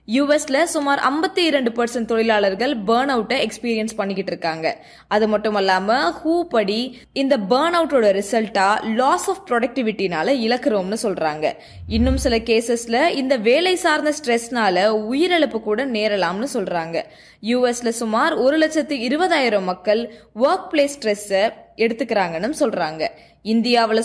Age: 20-39